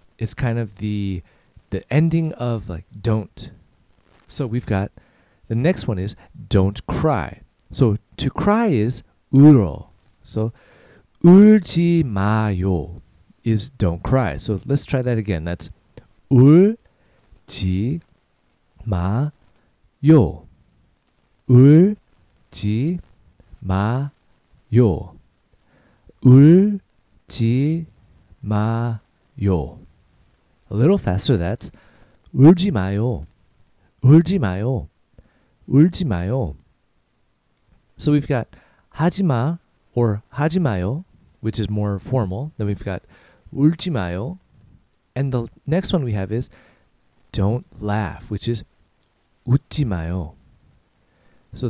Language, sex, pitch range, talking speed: English, male, 95-135 Hz, 90 wpm